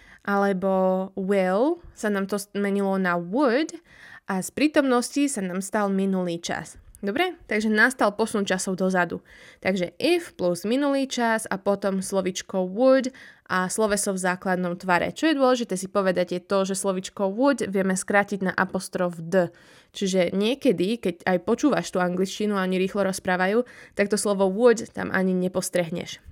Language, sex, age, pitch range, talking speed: Slovak, female, 20-39, 185-245 Hz, 155 wpm